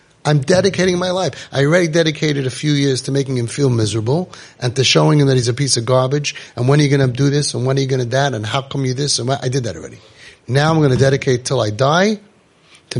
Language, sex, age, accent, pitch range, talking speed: English, male, 30-49, American, 115-145 Hz, 260 wpm